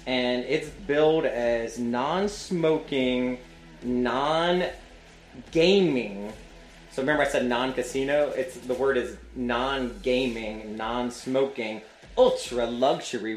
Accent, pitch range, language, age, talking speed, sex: American, 110-140 Hz, English, 30-49, 80 wpm, male